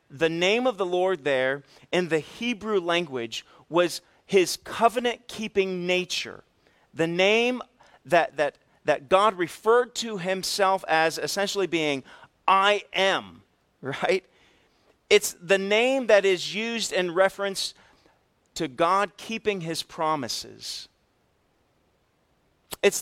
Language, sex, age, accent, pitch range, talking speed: English, male, 40-59, American, 165-215 Hz, 110 wpm